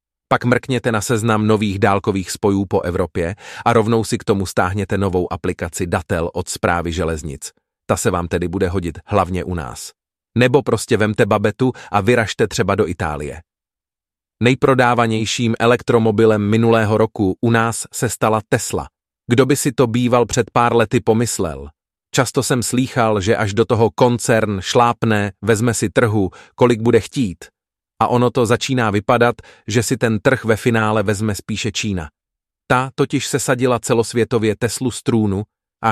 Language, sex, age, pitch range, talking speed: Czech, male, 30-49, 105-125 Hz, 155 wpm